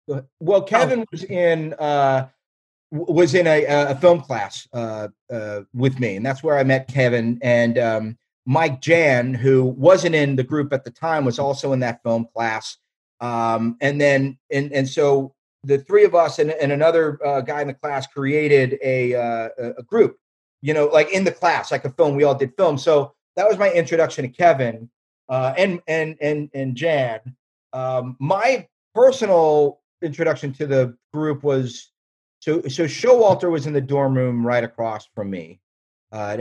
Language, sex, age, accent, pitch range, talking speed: English, male, 40-59, American, 120-155 Hz, 180 wpm